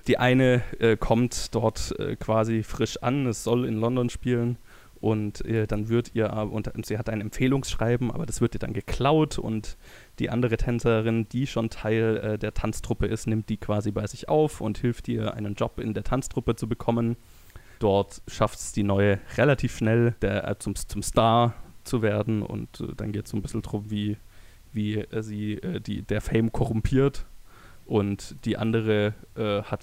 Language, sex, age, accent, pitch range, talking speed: German, male, 20-39, German, 105-120 Hz, 190 wpm